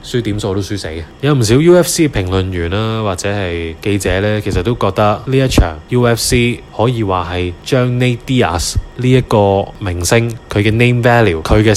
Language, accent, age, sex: Chinese, native, 20-39, male